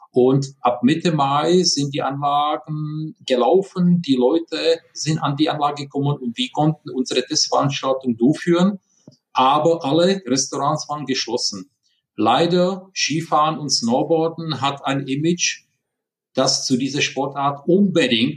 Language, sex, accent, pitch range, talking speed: German, male, German, 135-170 Hz, 125 wpm